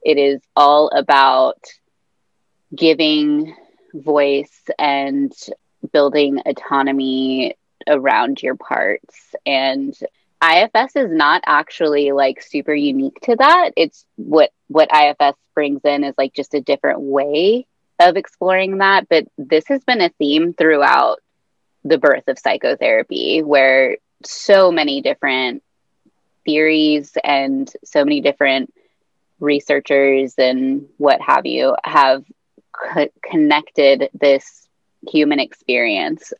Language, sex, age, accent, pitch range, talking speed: English, female, 20-39, American, 140-205 Hz, 110 wpm